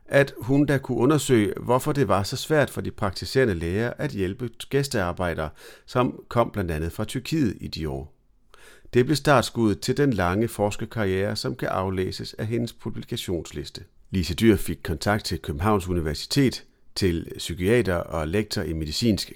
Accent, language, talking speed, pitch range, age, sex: native, Danish, 160 wpm, 90-120 Hz, 40-59, male